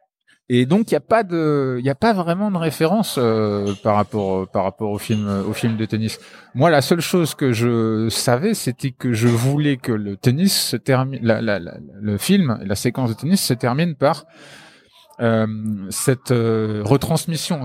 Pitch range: 120-165 Hz